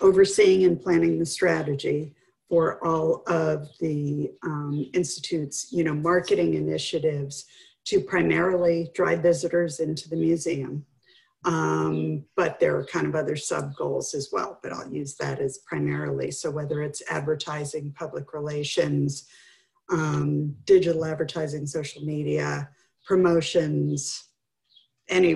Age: 50-69